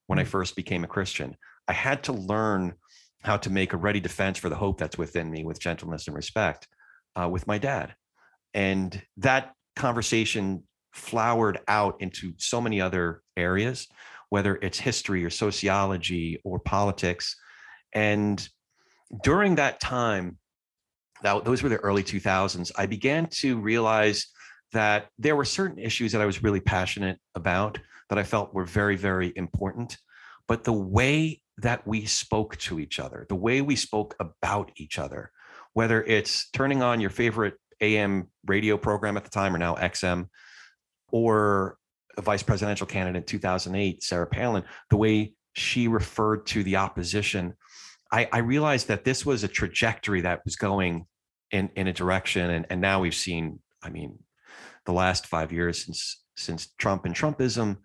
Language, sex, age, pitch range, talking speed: English, male, 40-59, 95-110 Hz, 160 wpm